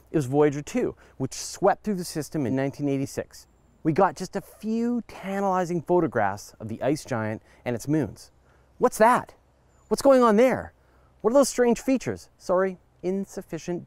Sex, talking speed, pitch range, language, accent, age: male, 165 wpm, 130-205 Hz, English, American, 30-49